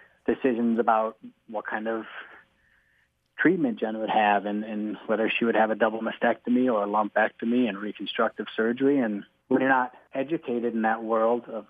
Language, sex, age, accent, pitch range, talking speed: English, male, 30-49, American, 110-125 Hz, 170 wpm